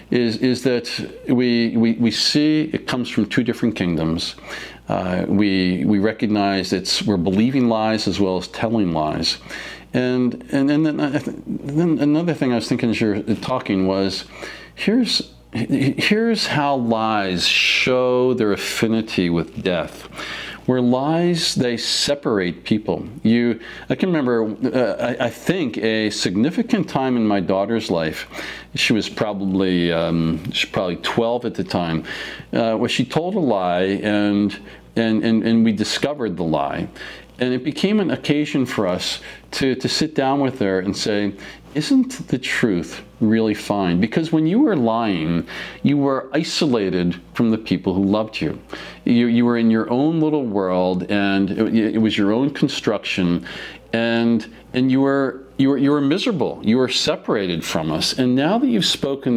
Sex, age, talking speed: male, 50-69, 165 wpm